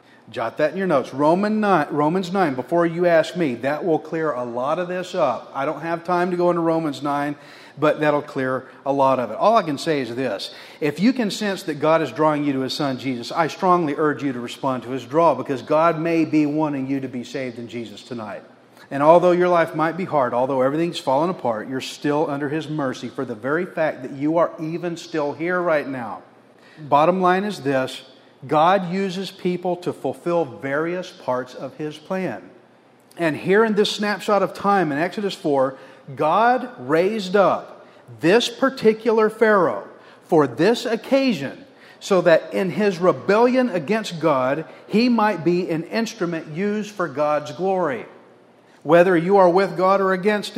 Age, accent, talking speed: 40-59, American, 190 wpm